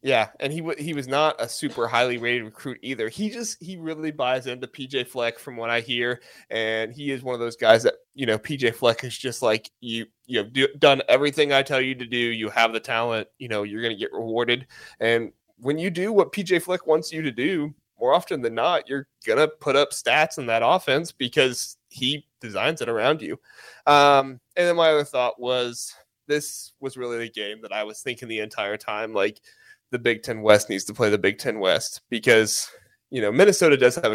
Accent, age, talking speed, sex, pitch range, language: American, 20-39, 225 wpm, male, 115-145 Hz, English